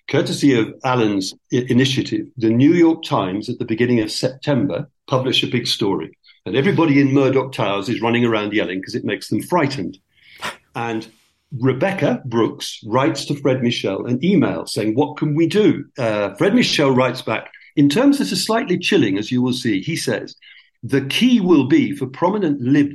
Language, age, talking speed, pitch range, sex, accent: English, 50-69, 185 wpm, 120-155 Hz, male, British